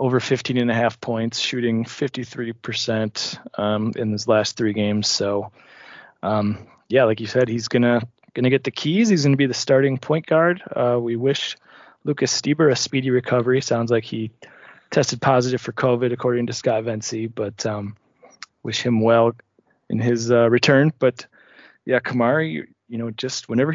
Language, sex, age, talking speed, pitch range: English, male, 20-39, 175 wpm, 115-130 Hz